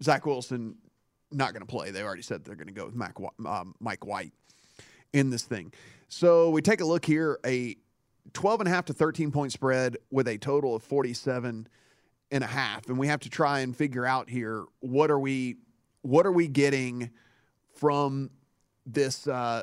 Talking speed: 190 wpm